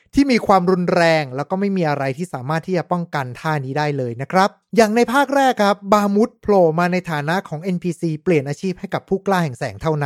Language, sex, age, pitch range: Thai, male, 20-39, 170-230 Hz